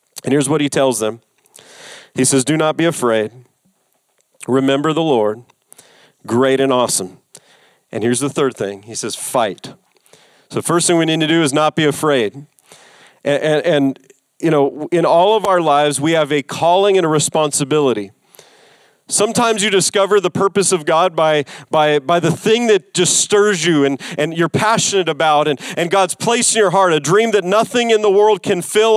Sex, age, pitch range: male, 40-59, 165-235 Hz